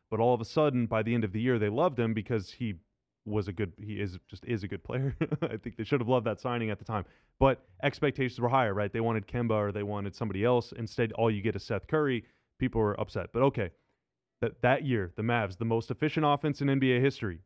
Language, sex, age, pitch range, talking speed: English, male, 30-49, 110-145 Hz, 260 wpm